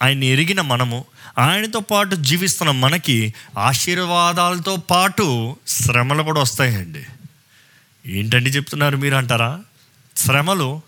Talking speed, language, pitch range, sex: 95 wpm, Telugu, 130-185 Hz, male